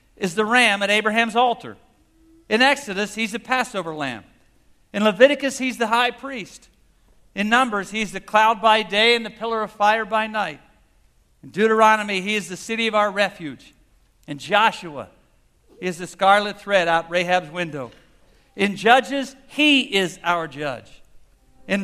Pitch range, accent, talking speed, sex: 185-230 Hz, American, 155 wpm, male